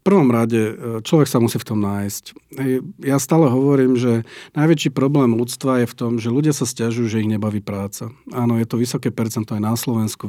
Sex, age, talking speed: male, 40-59, 205 wpm